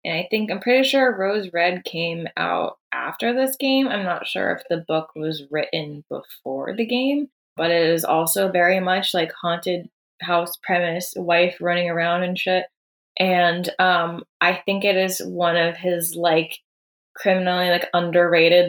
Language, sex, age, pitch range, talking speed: English, female, 20-39, 170-210 Hz, 165 wpm